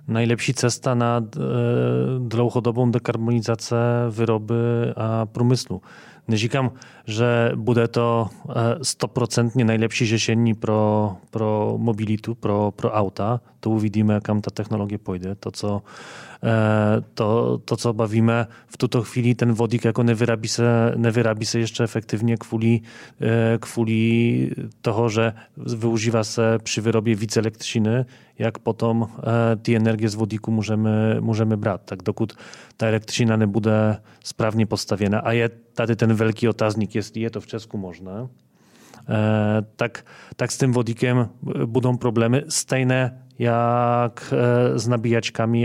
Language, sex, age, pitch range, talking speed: Czech, male, 30-49, 110-120 Hz, 120 wpm